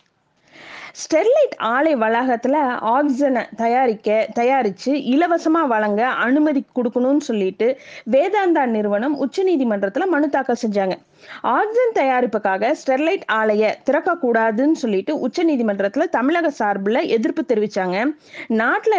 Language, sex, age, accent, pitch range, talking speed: Tamil, female, 30-49, native, 225-310 Hz, 100 wpm